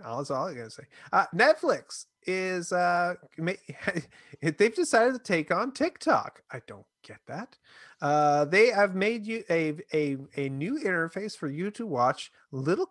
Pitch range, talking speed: 115-165 Hz, 165 wpm